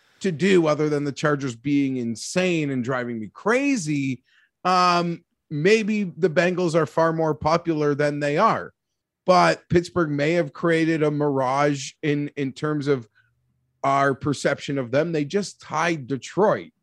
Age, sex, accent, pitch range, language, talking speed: 30-49, male, American, 140-170 Hz, English, 150 wpm